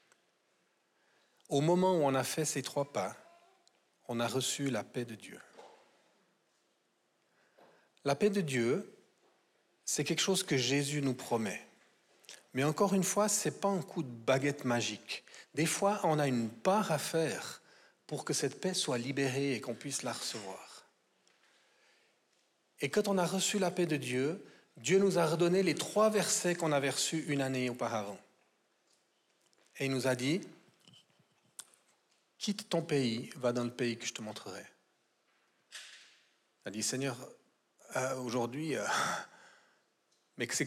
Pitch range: 130-180 Hz